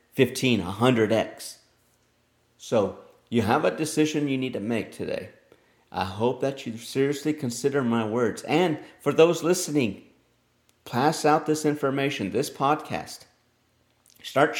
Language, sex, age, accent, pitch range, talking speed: English, male, 50-69, American, 105-135 Hz, 125 wpm